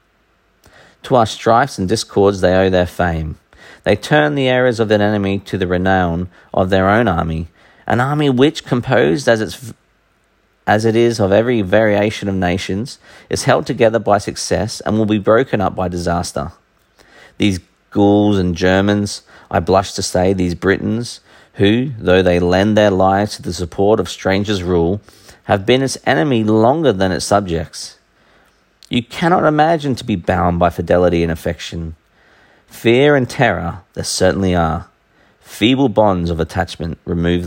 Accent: Australian